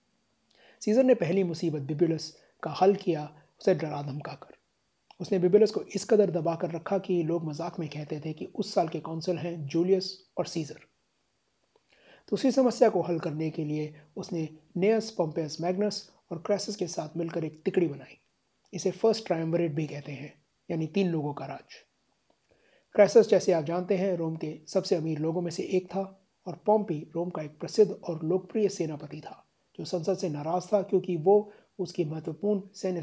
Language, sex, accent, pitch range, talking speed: Hindi, male, native, 155-195 Hz, 180 wpm